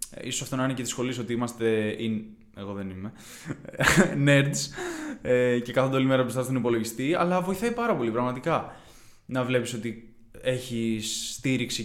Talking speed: 155 wpm